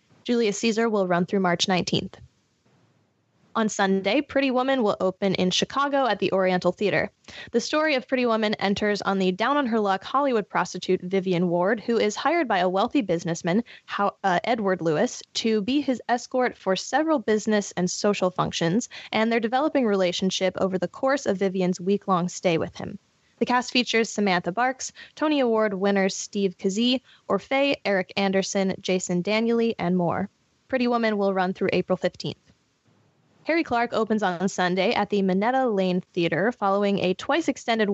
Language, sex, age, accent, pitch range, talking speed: English, female, 10-29, American, 185-240 Hz, 165 wpm